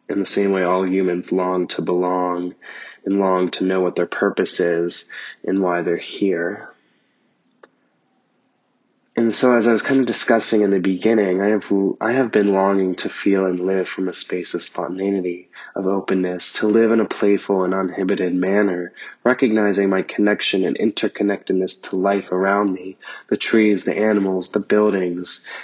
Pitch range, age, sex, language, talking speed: 95-110 Hz, 20-39, male, English, 170 wpm